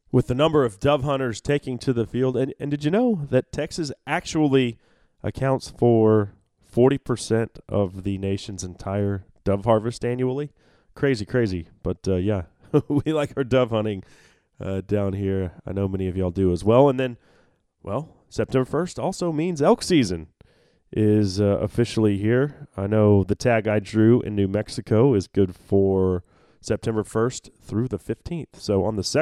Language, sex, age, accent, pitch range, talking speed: English, male, 30-49, American, 95-130 Hz, 170 wpm